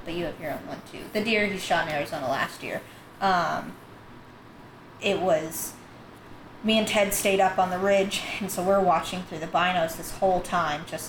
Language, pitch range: English, 175-205 Hz